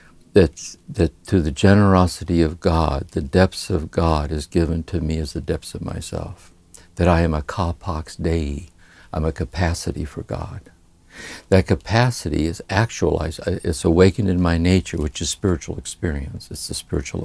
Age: 60-79